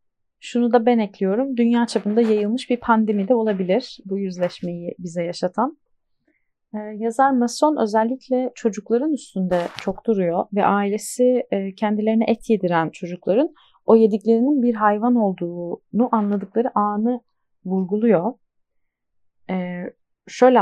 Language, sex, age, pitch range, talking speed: Turkish, female, 30-49, 195-250 Hz, 115 wpm